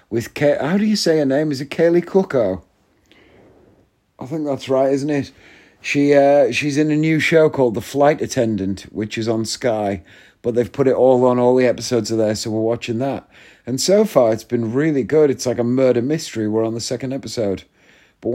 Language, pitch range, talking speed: English, 110-135 Hz, 215 wpm